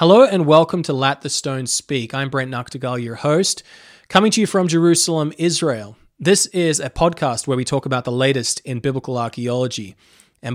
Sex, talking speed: male, 190 wpm